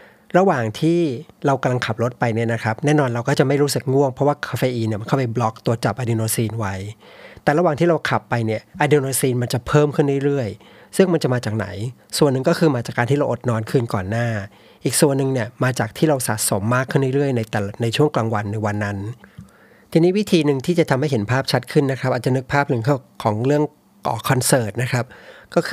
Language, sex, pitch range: Thai, male, 115-145 Hz